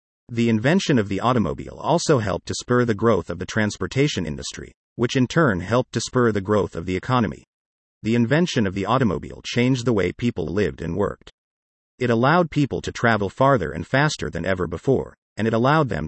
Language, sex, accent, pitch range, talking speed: English, male, American, 95-130 Hz, 200 wpm